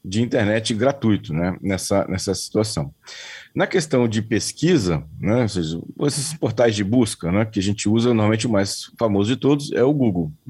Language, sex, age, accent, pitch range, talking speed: Portuguese, male, 40-59, Brazilian, 105-135 Hz, 170 wpm